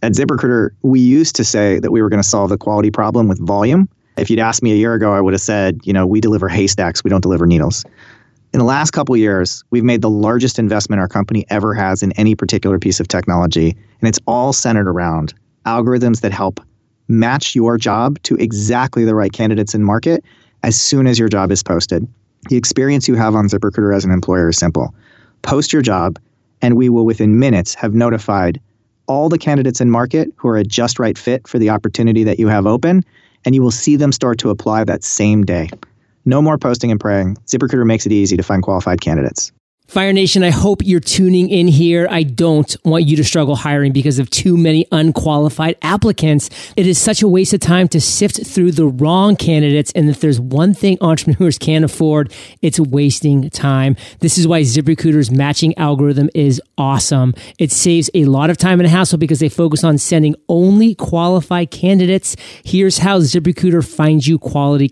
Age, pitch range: 30-49, 110-160 Hz